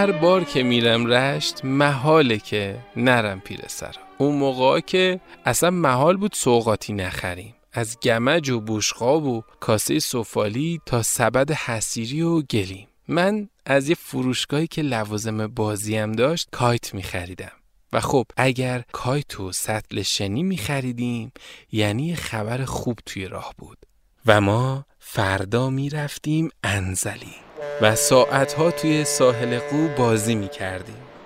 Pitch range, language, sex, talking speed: 115-145 Hz, Persian, male, 130 wpm